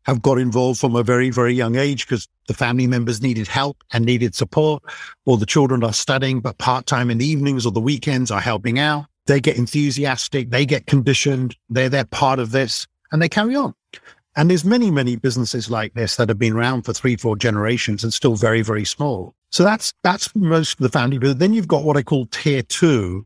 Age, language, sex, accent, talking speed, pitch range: 50-69, English, male, British, 220 wpm, 120-145 Hz